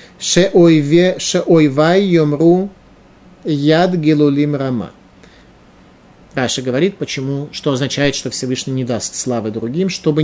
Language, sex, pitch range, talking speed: Russian, male, 125-165 Hz, 105 wpm